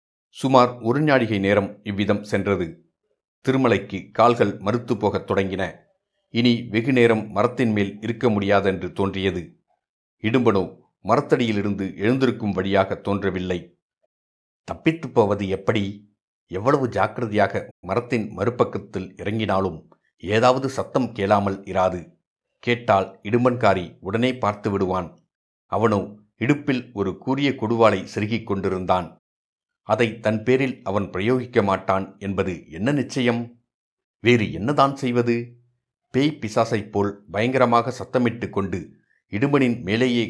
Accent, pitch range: native, 100-125 Hz